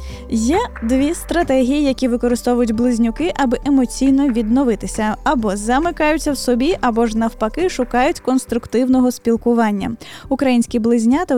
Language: Ukrainian